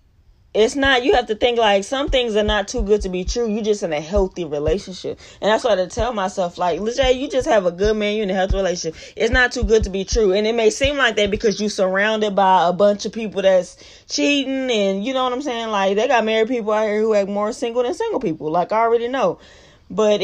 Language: English